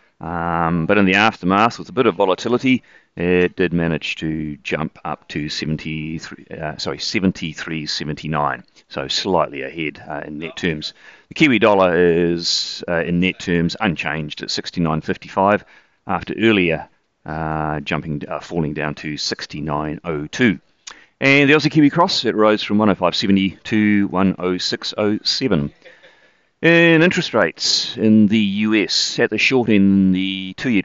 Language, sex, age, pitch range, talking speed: English, male, 40-59, 80-105 Hz, 140 wpm